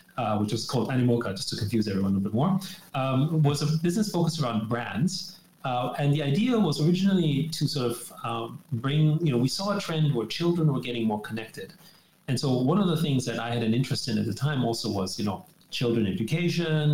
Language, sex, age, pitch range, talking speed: English, male, 30-49, 115-150 Hz, 225 wpm